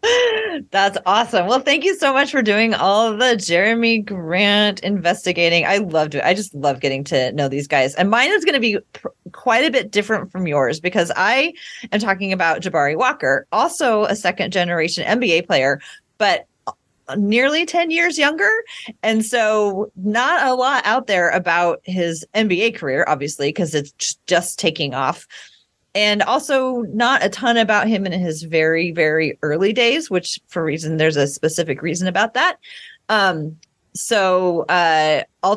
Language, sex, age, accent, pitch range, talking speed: English, female, 30-49, American, 160-230 Hz, 165 wpm